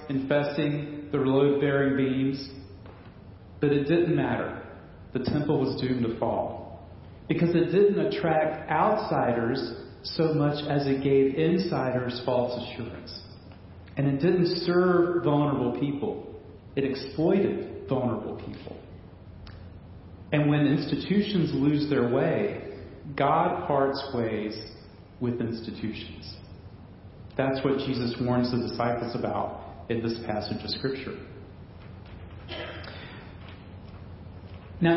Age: 40-59